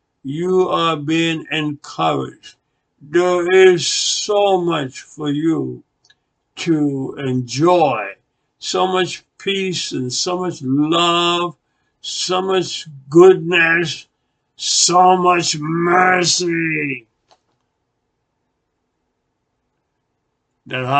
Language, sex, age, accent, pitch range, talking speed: English, male, 60-79, American, 140-185 Hz, 75 wpm